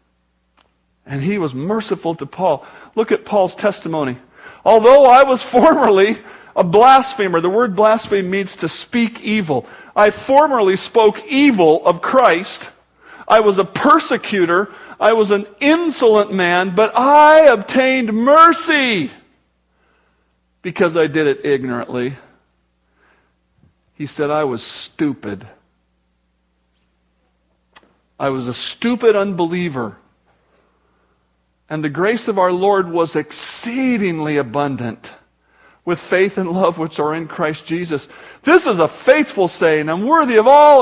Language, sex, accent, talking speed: English, male, American, 125 wpm